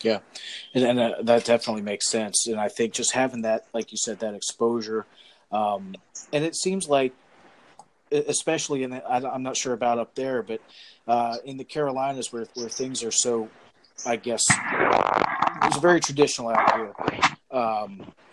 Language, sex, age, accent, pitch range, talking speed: English, male, 40-59, American, 115-135 Hz, 165 wpm